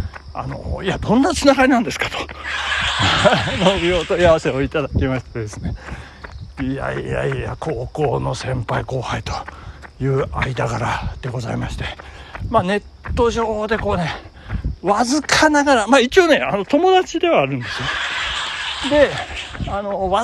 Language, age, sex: Japanese, 60-79, male